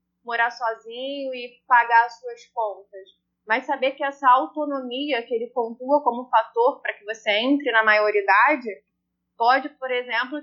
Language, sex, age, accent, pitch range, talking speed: Portuguese, female, 20-39, Brazilian, 230-275 Hz, 150 wpm